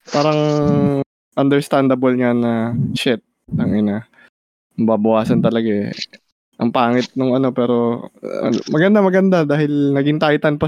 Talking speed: 120 wpm